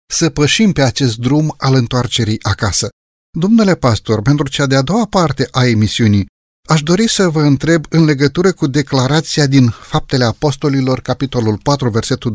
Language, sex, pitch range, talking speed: Romanian, male, 120-165 Hz, 155 wpm